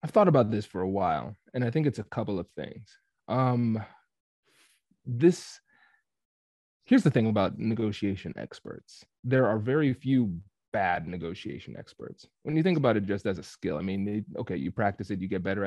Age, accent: 20-39, American